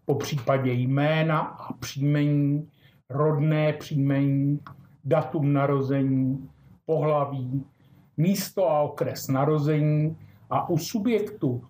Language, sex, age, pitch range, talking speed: Czech, male, 50-69, 135-160 Hz, 85 wpm